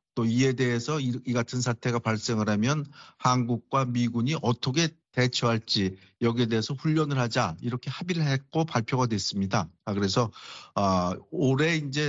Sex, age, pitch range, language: male, 50-69, 120-150 Hz, Korean